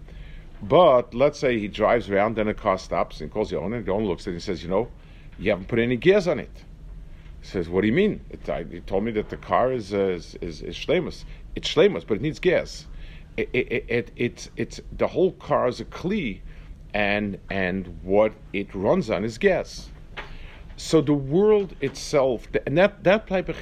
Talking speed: 205 wpm